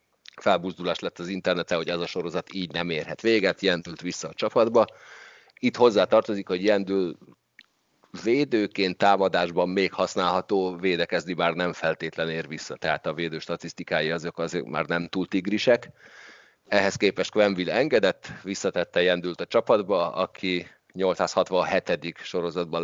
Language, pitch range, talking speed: Hungarian, 85-95 Hz, 135 wpm